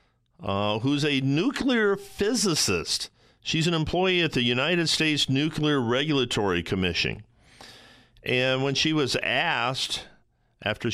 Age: 50-69